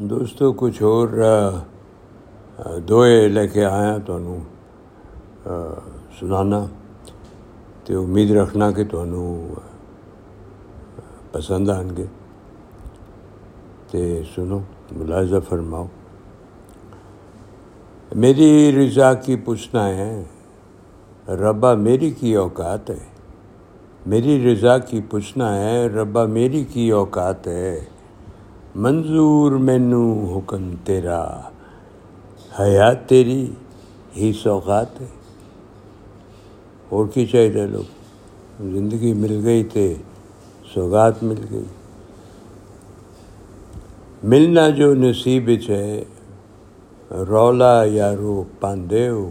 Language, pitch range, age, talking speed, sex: Urdu, 95-115 Hz, 60-79, 85 wpm, male